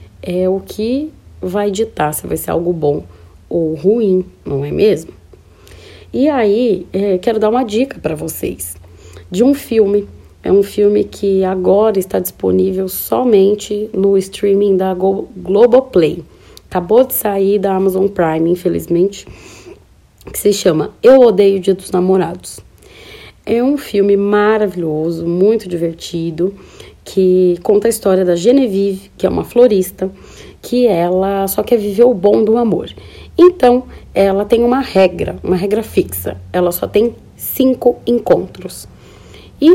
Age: 30-49